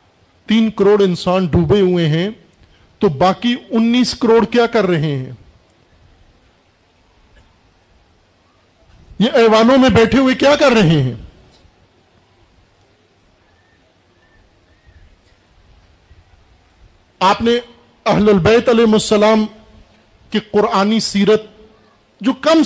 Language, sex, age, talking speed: Urdu, male, 50-69, 85 wpm